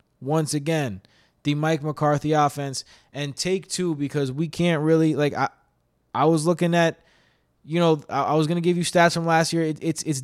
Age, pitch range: 20-39, 120-150 Hz